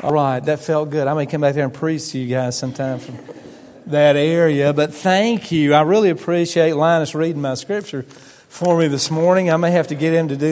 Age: 40-59